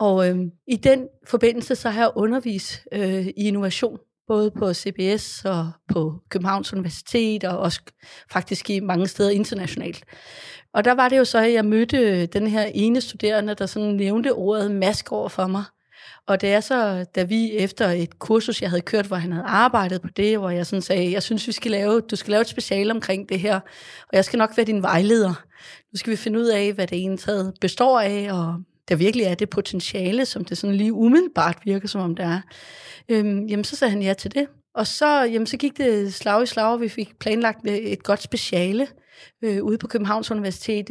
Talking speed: 210 wpm